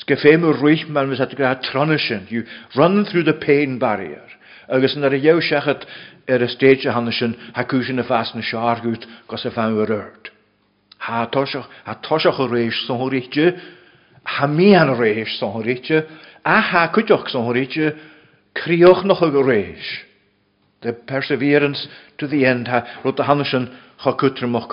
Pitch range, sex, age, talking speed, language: 120-155 Hz, male, 50-69, 70 wpm, English